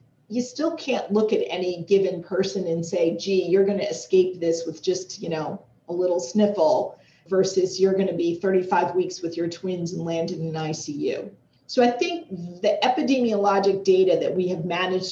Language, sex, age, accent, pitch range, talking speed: English, female, 40-59, American, 170-215 Hz, 190 wpm